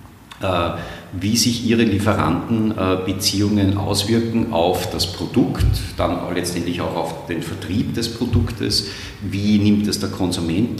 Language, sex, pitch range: German, male, 90-105 Hz